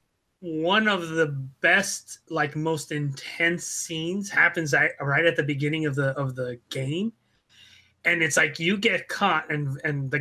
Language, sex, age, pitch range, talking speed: English, male, 20-39, 150-185 Hz, 160 wpm